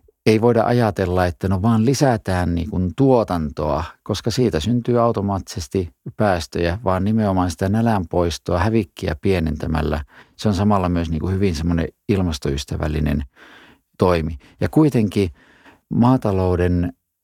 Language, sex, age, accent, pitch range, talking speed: Finnish, male, 50-69, native, 90-115 Hz, 105 wpm